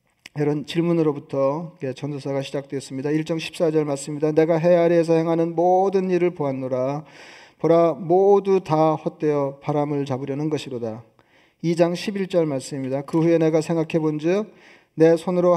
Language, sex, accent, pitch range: Korean, male, native, 145-170 Hz